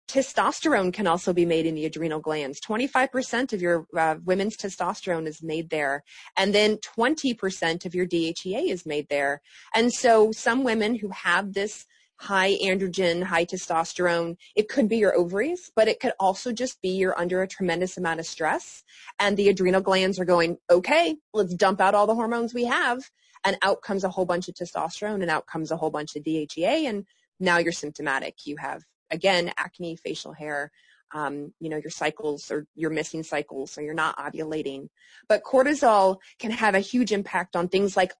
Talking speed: 190 wpm